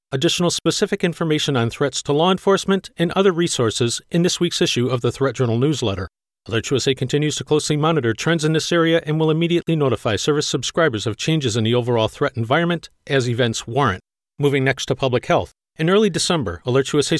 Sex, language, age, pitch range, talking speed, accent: male, English, 40-59, 130-175 Hz, 195 wpm, American